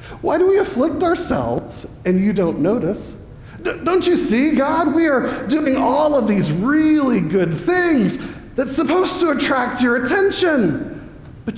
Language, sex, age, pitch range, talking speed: English, male, 40-59, 225-315 Hz, 150 wpm